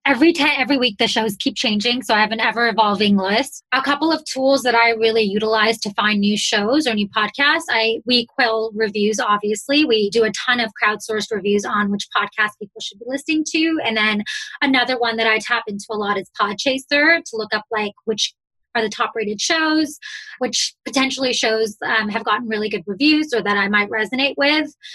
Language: English